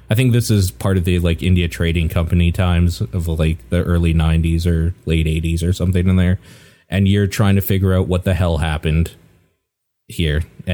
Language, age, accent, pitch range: English, 20-39, American, 90-120 Hz